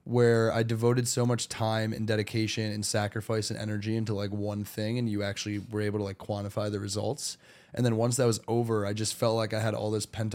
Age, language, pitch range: 20-39, English, 110-125 Hz